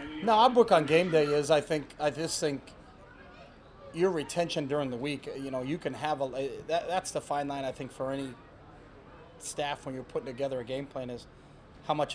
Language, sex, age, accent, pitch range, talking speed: English, male, 30-49, American, 130-150 Hz, 220 wpm